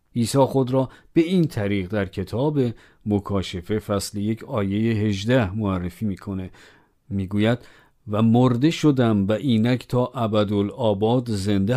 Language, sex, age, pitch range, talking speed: Persian, male, 50-69, 100-130 Hz, 120 wpm